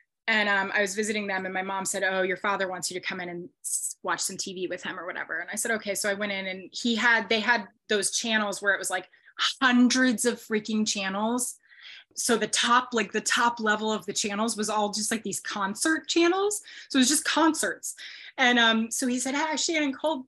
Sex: female